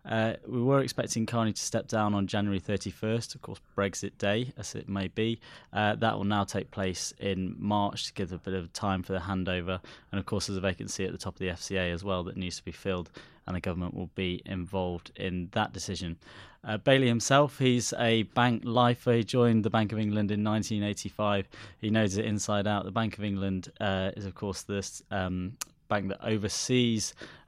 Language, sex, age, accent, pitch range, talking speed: English, male, 20-39, British, 95-115 Hz, 210 wpm